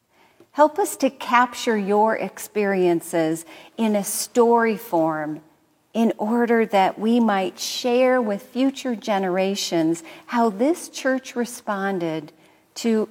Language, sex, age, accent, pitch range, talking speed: English, female, 50-69, American, 175-225 Hz, 110 wpm